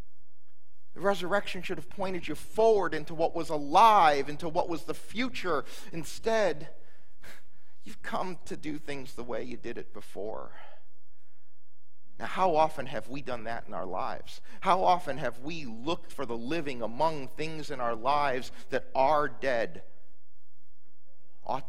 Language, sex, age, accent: English, male, 40-59, American